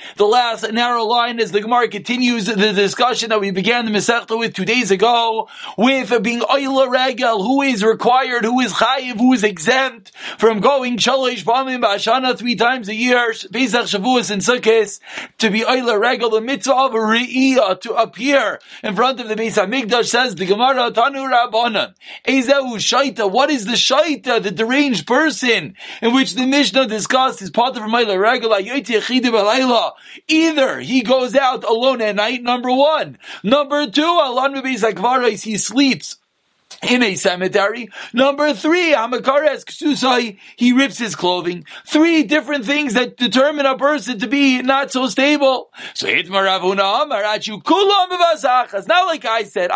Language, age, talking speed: English, 40-59, 155 wpm